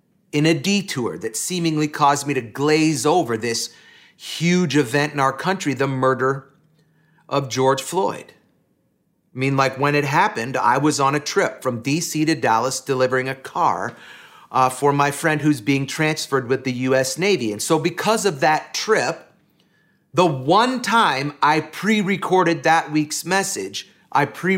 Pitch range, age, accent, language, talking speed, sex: 130-170 Hz, 40-59, American, English, 165 wpm, male